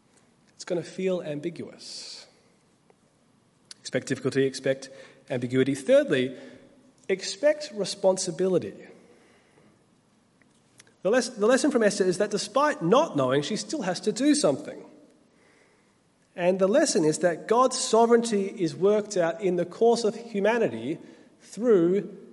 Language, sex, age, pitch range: English, male, 30-49, 145-220 Hz